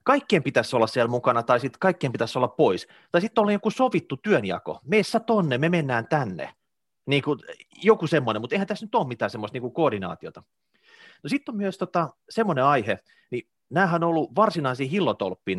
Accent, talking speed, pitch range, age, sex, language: native, 180 wpm, 120-190 Hz, 30-49, male, Finnish